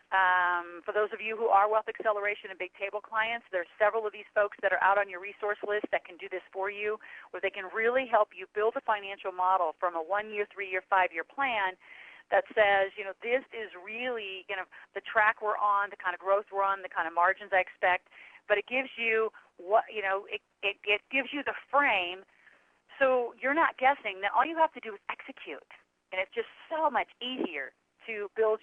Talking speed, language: 220 wpm, English